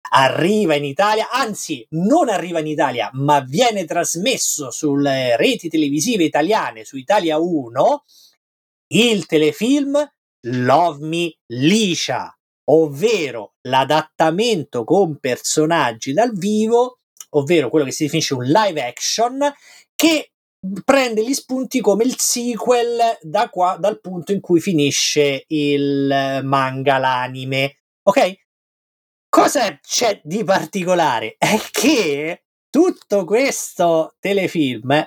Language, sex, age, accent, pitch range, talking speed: Italian, male, 30-49, native, 150-230 Hz, 110 wpm